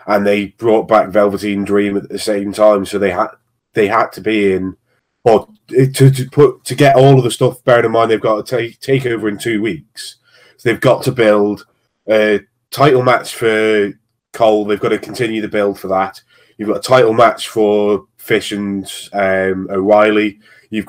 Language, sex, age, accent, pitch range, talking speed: English, male, 20-39, British, 100-120 Hz, 195 wpm